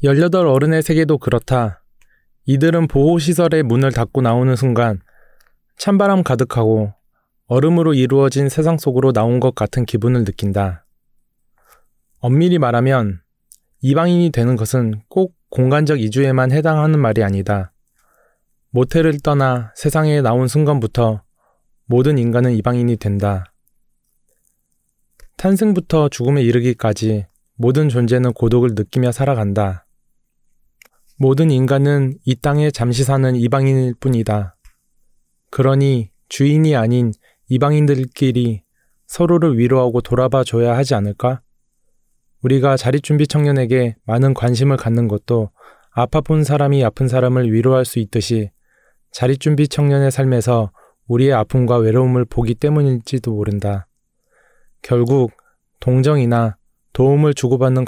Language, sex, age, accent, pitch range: Korean, male, 20-39, native, 115-140 Hz